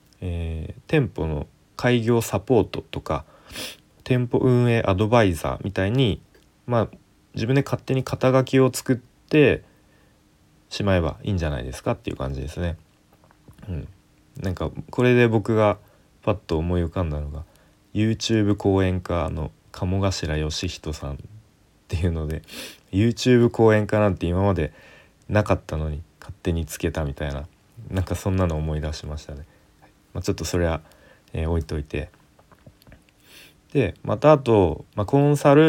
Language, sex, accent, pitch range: Japanese, male, native, 80-115 Hz